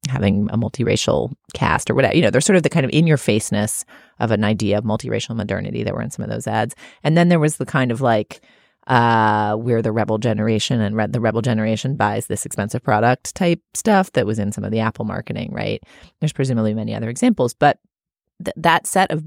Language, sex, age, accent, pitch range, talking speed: English, female, 30-49, American, 110-155 Hz, 220 wpm